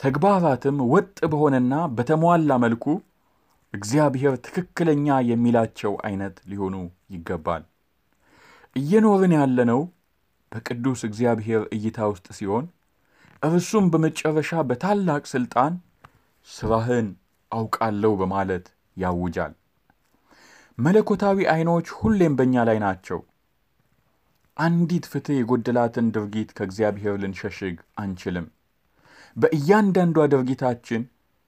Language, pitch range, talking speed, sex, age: Amharic, 100-140 Hz, 80 wpm, male, 30-49